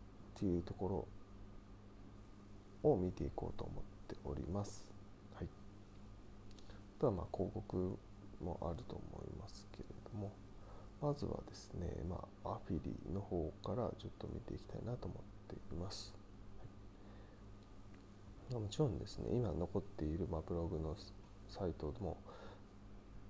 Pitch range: 95-105 Hz